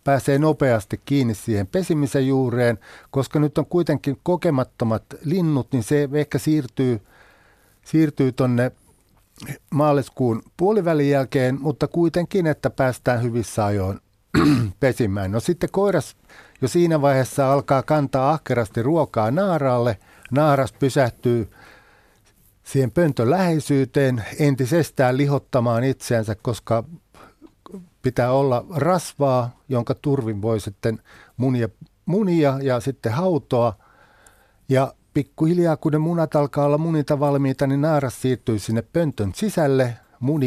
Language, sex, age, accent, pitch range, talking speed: Finnish, male, 60-79, native, 120-150 Hz, 110 wpm